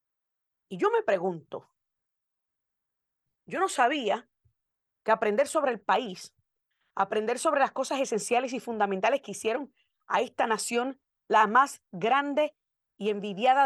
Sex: female